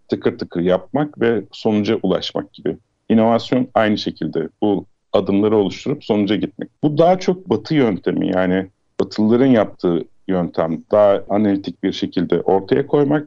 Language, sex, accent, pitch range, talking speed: Turkish, male, native, 95-135 Hz, 135 wpm